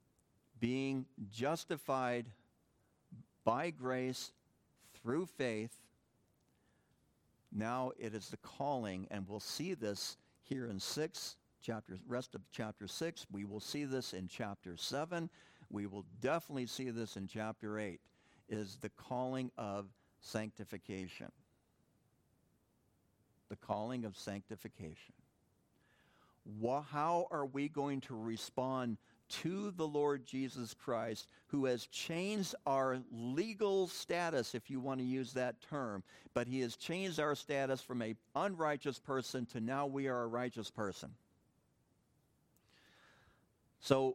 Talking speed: 120 wpm